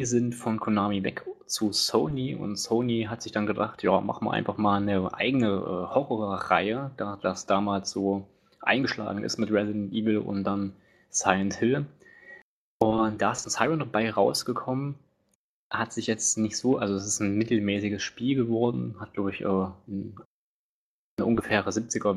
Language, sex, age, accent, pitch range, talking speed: English, male, 20-39, German, 100-115 Hz, 155 wpm